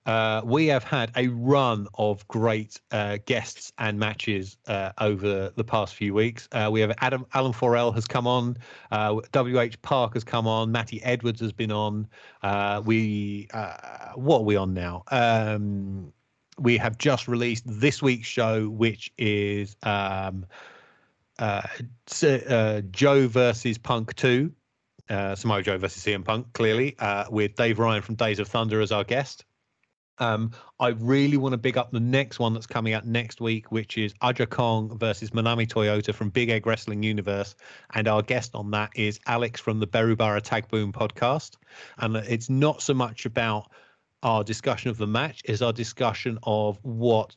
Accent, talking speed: British, 175 wpm